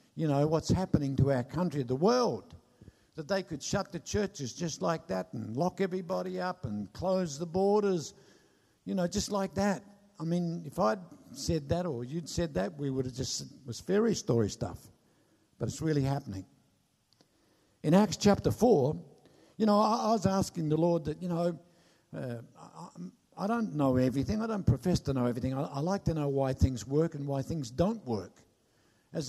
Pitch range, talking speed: 135-185 Hz, 190 wpm